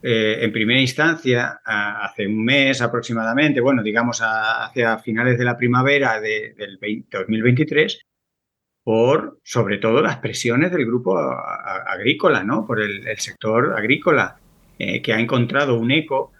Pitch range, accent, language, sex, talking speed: 120-190 Hz, Spanish, Spanish, male, 145 wpm